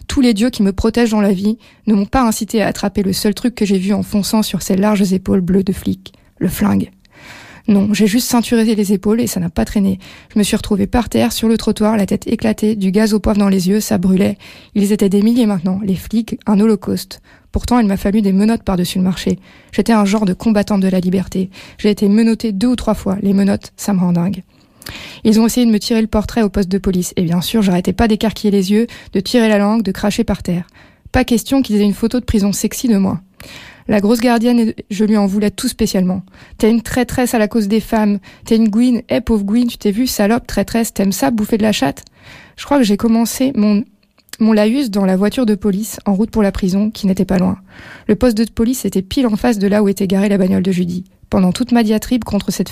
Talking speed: 250 wpm